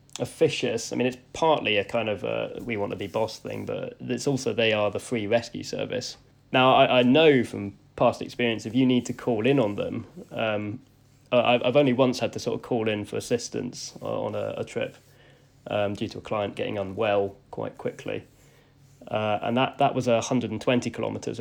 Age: 20-39